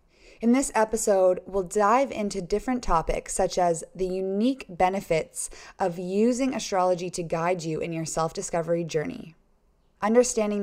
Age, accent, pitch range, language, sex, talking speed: 20-39, American, 165-205 Hz, English, female, 135 wpm